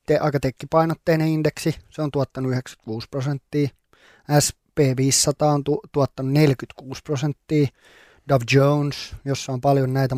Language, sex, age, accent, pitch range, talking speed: Finnish, male, 20-39, native, 130-150 Hz, 110 wpm